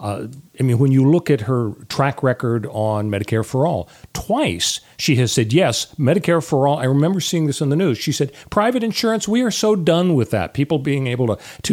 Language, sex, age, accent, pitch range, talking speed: English, male, 40-59, American, 115-145 Hz, 225 wpm